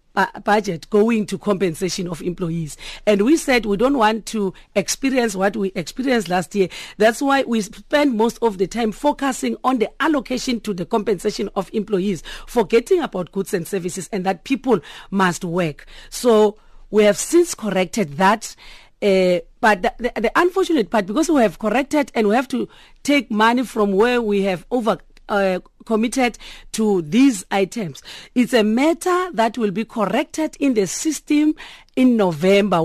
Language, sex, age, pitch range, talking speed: English, female, 40-59, 195-250 Hz, 170 wpm